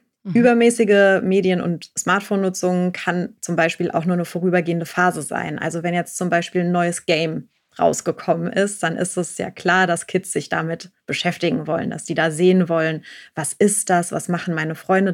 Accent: German